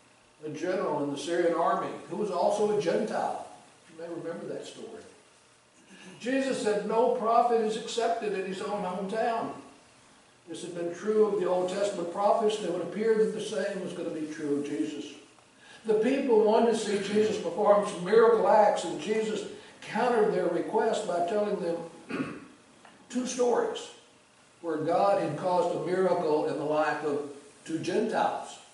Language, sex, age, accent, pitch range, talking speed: English, male, 60-79, American, 170-225 Hz, 165 wpm